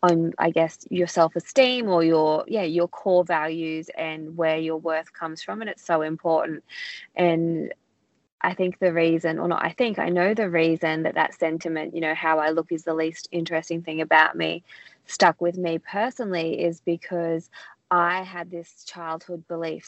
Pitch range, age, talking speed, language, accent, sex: 165-185 Hz, 20-39, 180 wpm, English, Australian, female